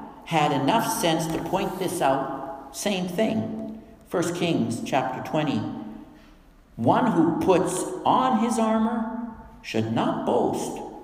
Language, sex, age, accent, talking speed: English, male, 60-79, American, 120 wpm